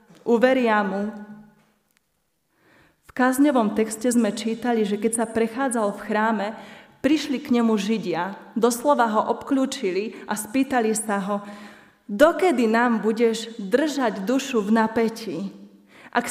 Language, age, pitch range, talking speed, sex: Slovak, 30-49, 205-240 Hz, 120 wpm, female